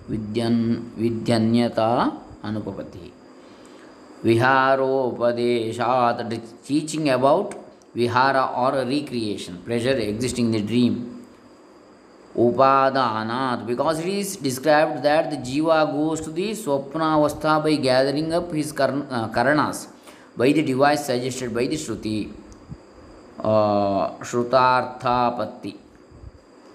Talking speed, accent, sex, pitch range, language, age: 80 wpm, native, male, 120-150 Hz, Kannada, 20-39